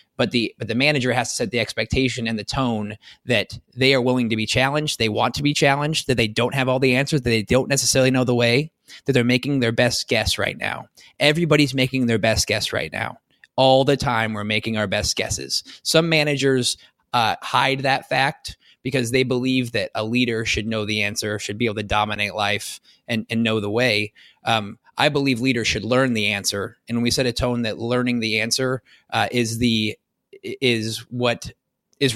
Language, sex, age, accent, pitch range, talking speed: English, male, 20-39, American, 115-135 Hz, 210 wpm